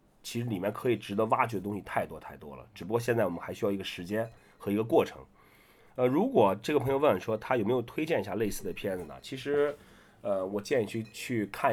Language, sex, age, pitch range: Chinese, male, 30-49, 95-120 Hz